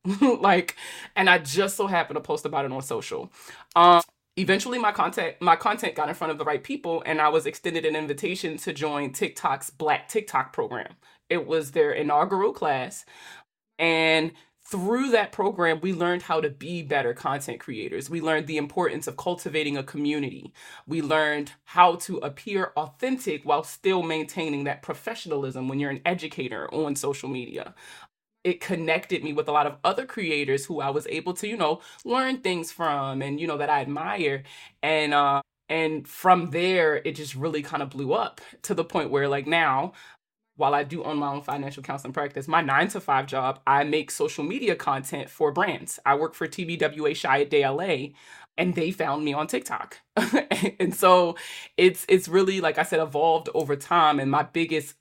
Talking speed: 185 wpm